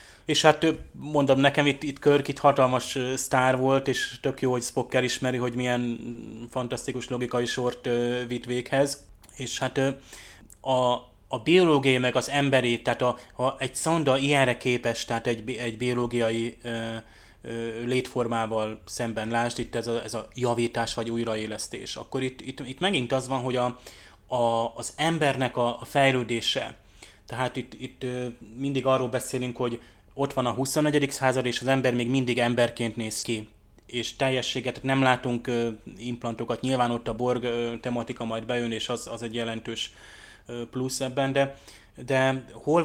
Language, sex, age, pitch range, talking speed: Hungarian, male, 20-39, 120-130 Hz, 155 wpm